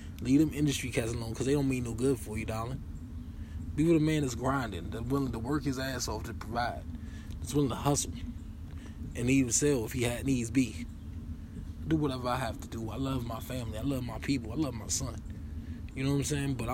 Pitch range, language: 85-130 Hz, English